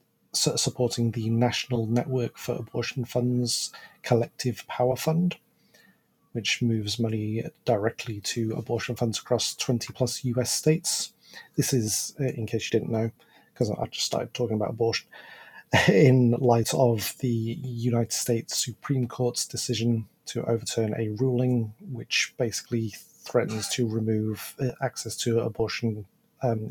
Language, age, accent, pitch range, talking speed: English, 30-49, British, 115-130 Hz, 135 wpm